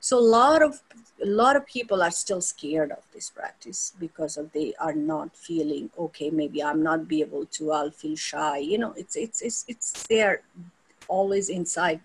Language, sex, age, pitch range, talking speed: English, female, 50-69, 165-225 Hz, 195 wpm